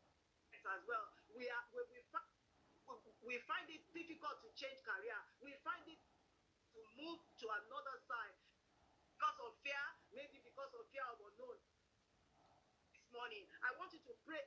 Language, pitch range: English, 275-390 Hz